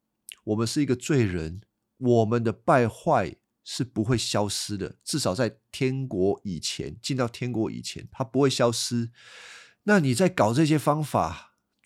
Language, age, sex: Chinese, 50-69, male